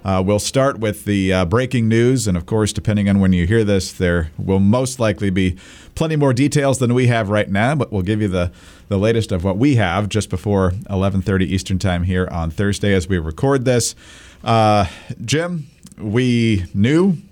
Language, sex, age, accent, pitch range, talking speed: English, male, 40-59, American, 95-120 Hz, 200 wpm